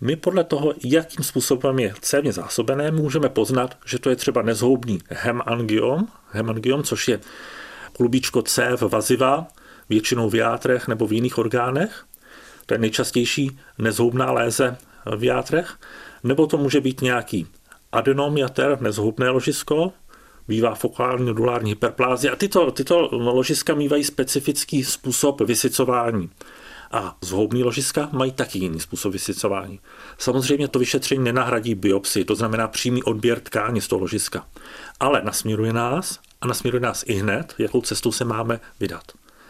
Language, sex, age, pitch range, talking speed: Czech, male, 40-59, 115-140 Hz, 140 wpm